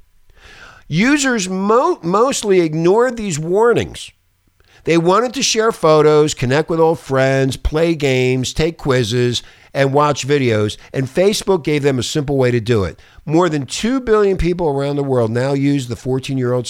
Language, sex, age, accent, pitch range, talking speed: English, male, 50-69, American, 120-185 Hz, 155 wpm